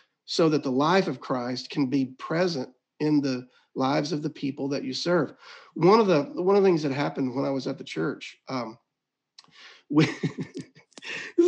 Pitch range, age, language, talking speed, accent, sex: 125-160 Hz, 40-59, English, 190 wpm, American, male